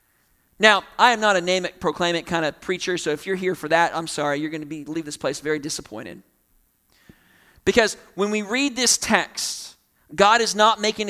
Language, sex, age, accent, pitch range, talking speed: English, male, 40-59, American, 180-230 Hz, 200 wpm